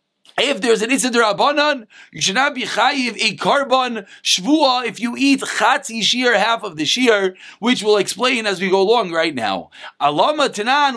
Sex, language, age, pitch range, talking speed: male, English, 30-49, 210-275 Hz, 180 wpm